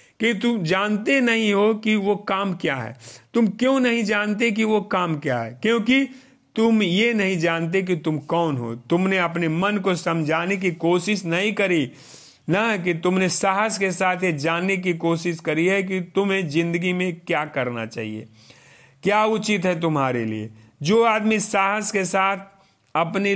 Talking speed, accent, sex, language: 170 wpm, native, male, Hindi